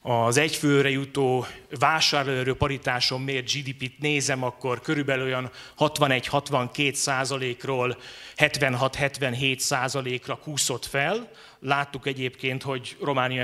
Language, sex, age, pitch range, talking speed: Hungarian, male, 30-49, 130-150 Hz, 90 wpm